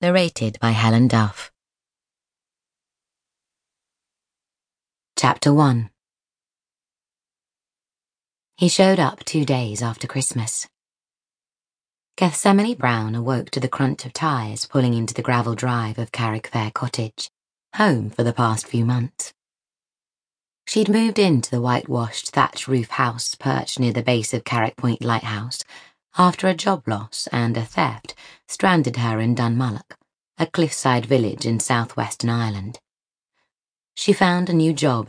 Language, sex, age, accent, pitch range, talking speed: English, female, 20-39, British, 115-145 Hz, 125 wpm